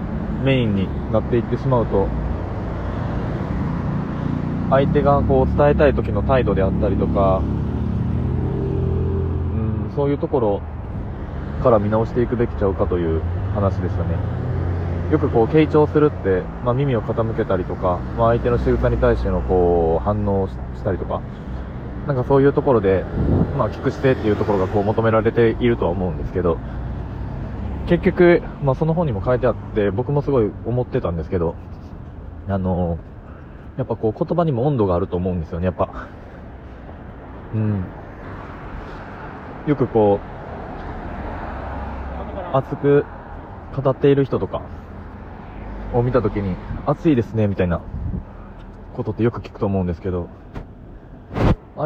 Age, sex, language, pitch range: 20-39, male, Japanese, 90-120 Hz